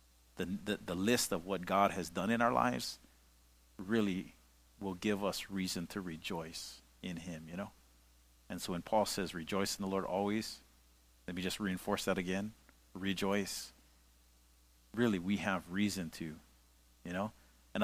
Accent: American